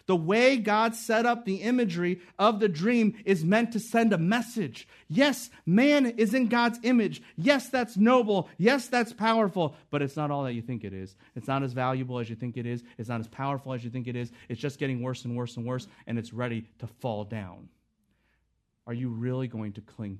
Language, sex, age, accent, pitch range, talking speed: English, male, 40-59, American, 120-175 Hz, 225 wpm